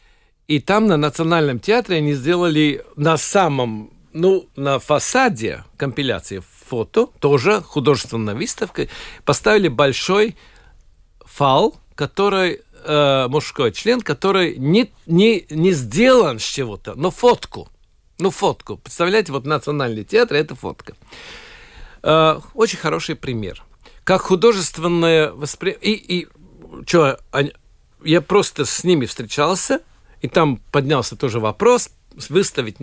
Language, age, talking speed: Russian, 60-79, 115 wpm